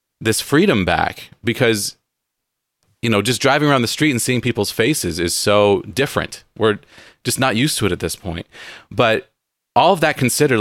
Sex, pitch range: male, 100-130 Hz